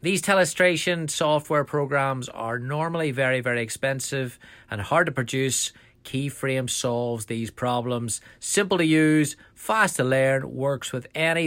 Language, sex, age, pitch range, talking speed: English, male, 30-49, 130-155 Hz, 135 wpm